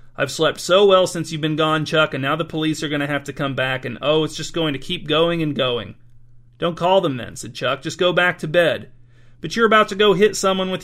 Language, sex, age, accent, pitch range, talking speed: English, male, 40-59, American, 130-170 Hz, 270 wpm